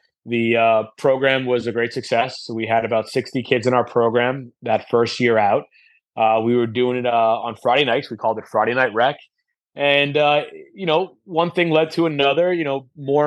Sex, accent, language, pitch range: male, American, English, 120-145 Hz